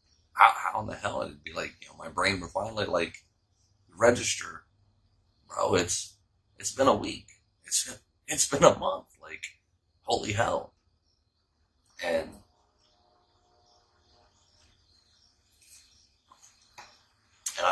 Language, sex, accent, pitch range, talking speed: English, male, American, 85-110 Hz, 105 wpm